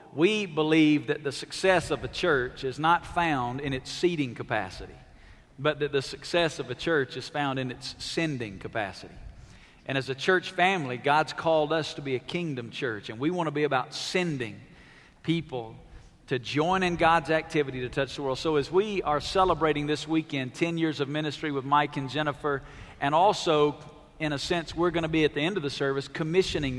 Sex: male